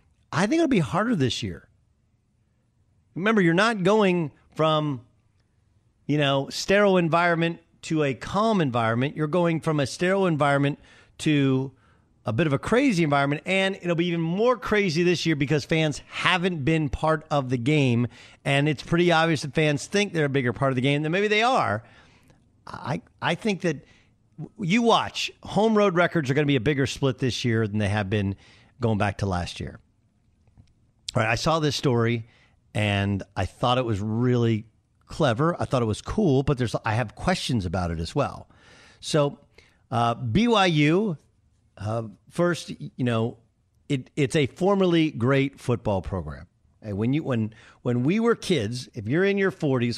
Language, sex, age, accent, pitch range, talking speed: English, male, 50-69, American, 115-165 Hz, 180 wpm